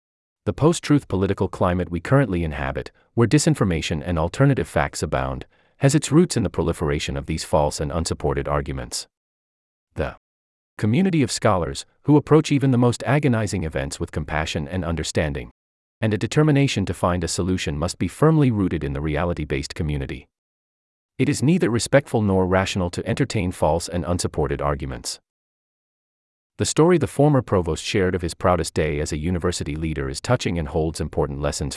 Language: English